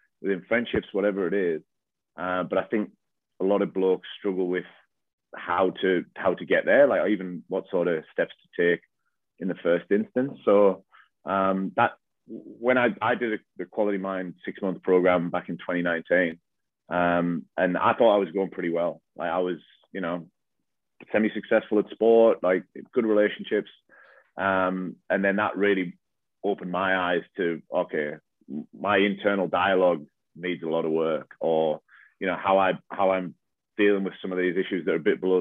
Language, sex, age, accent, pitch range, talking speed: English, male, 30-49, British, 85-100 Hz, 180 wpm